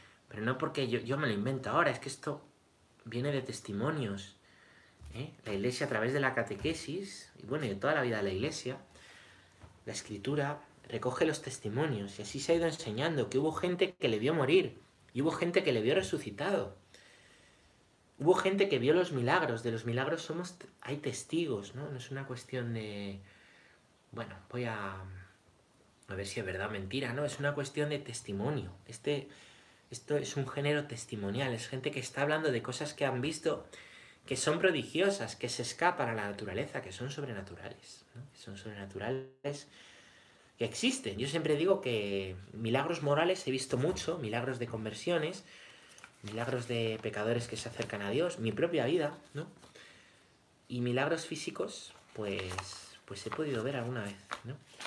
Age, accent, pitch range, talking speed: 30-49, Spanish, 105-145 Hz, 175 wpm